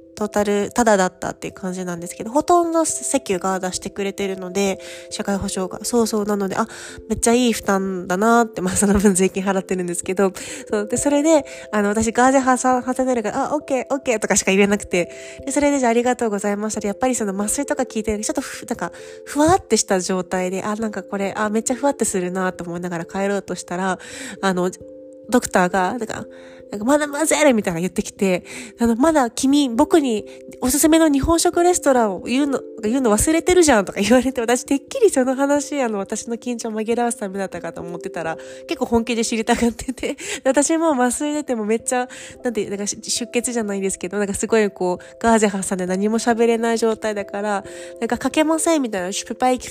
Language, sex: Japanese, female